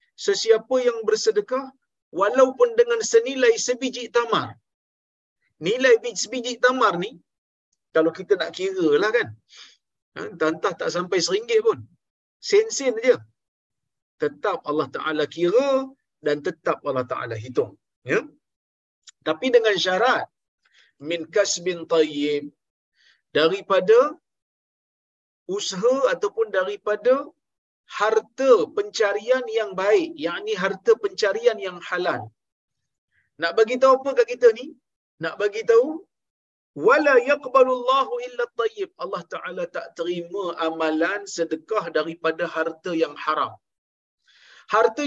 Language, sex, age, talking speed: Malayalam, male, 50-69, 110 wpm